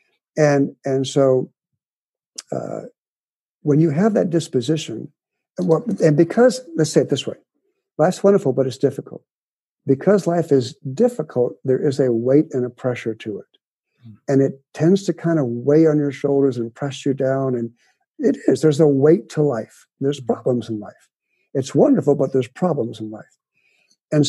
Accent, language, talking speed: American, English, 170 wpm